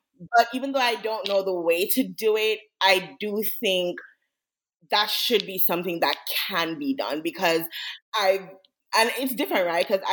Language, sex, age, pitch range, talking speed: English, female, 20-39, 165-215 Hz, 170 wpm